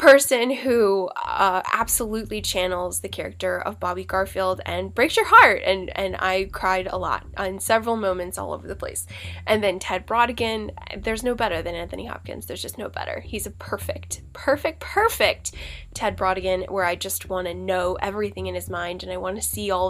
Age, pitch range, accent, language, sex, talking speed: 10-29, 180-225 Hz, American, English, female, 195 wpm